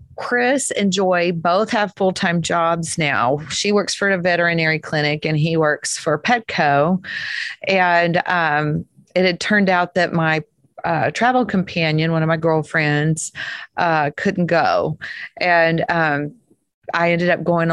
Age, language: 40-59, English